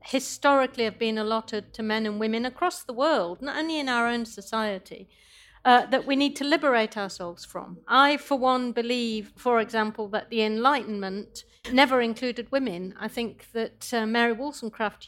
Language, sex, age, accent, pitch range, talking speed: English, female, 50-69, British, 215-255 Hz, 170 wpm